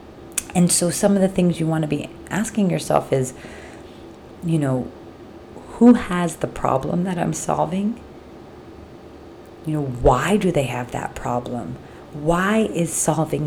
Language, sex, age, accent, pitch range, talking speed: English, female, 30-49, American, 130-180 Hz, 145 wpm